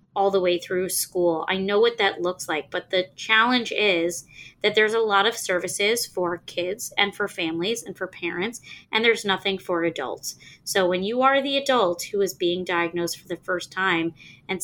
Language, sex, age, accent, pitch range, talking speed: English, female, 20-39, American, 180-220 Hz, 200 wpm